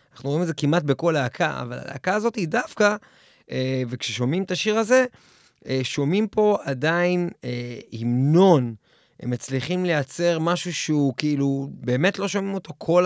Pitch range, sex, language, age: 135-195 Hz, male, Hebrew, 20-39